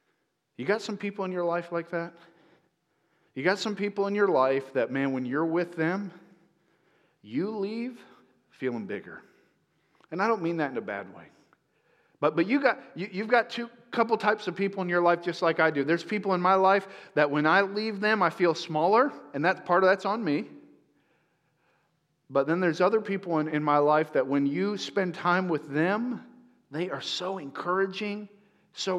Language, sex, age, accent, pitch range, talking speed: English, male, 40-59, American, 130-185 Hz, 195 wpm